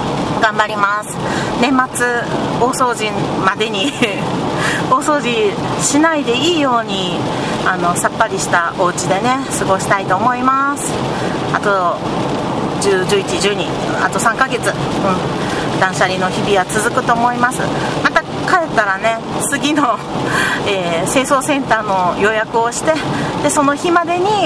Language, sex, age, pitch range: Japanese, female, 40-59, 185-265 Hz